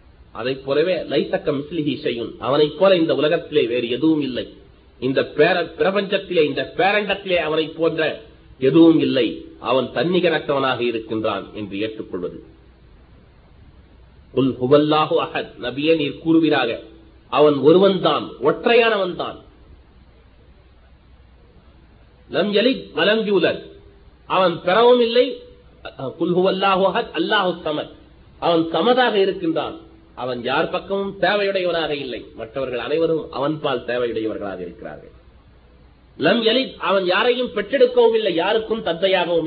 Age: 40-59